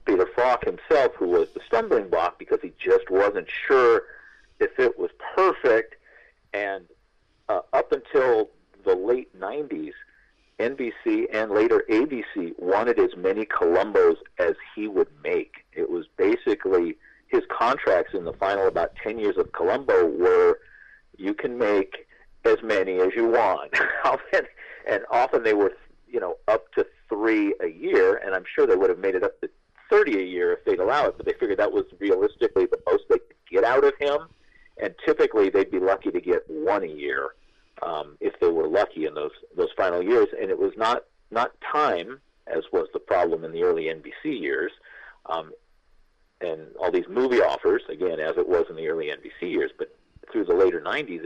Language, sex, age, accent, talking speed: English, male, 50-69, American, 180 wpm